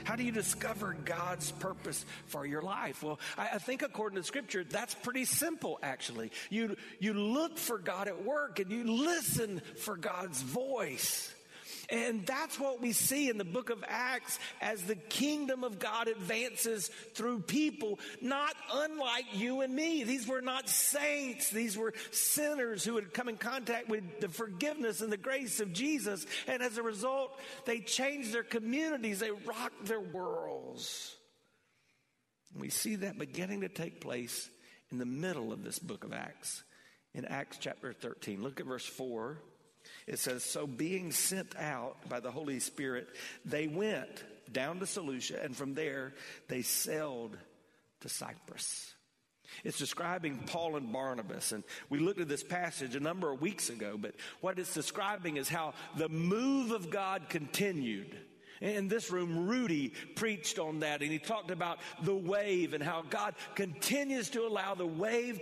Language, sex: English, male